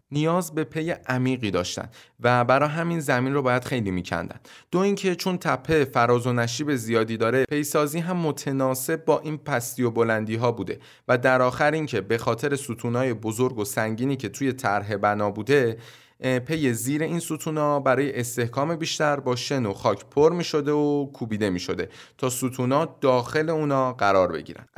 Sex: male